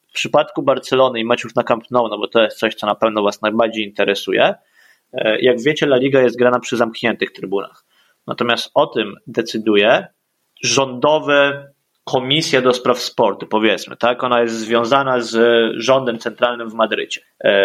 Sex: male